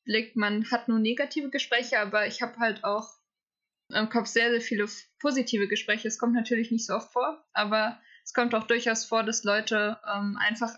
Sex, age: female, 20-39